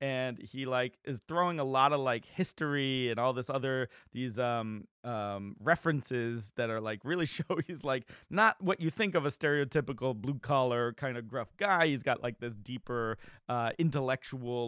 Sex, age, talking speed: male, 30-49, 185 wpm